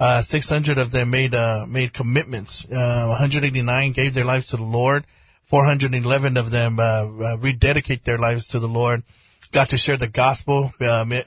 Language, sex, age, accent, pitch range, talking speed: English, male, 30-49, American, 120-140 Hz, 175 wpm